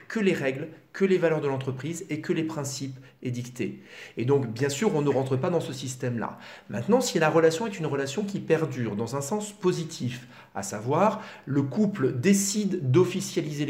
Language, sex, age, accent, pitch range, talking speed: French, male, 40-59, French, 120-160 Hz, 195 wpm